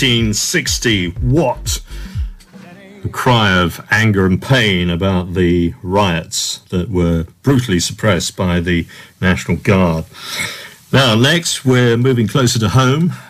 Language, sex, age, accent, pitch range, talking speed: English, male, 50-69, British, 95-130 Hz, 115 wpm